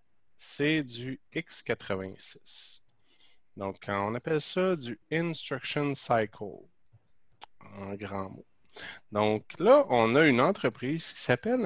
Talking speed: 110 wpm